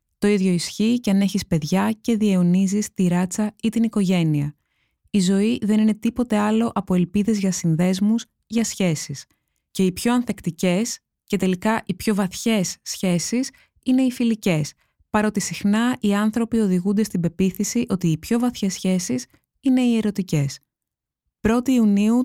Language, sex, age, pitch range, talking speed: Greek, female, 20-39, 175-225 Hz, 150 wpm